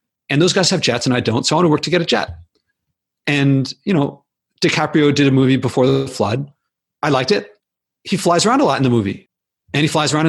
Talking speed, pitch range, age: 245 wpm, 130-175 Hz, 40-59